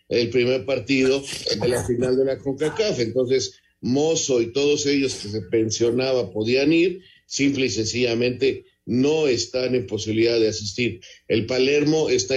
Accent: Mexican